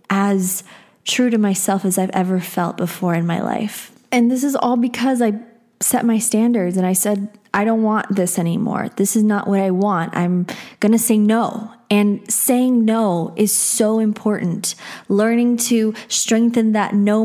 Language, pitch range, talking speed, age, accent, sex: English, 190-230 Hz, 175 wpm, 20-39, American, female